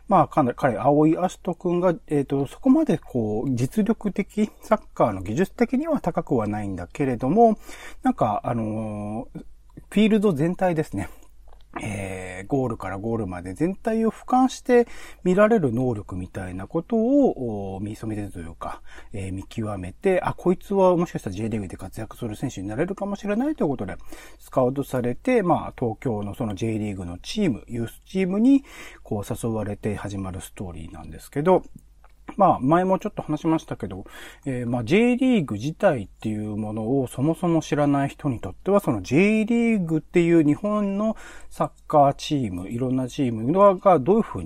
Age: 40-59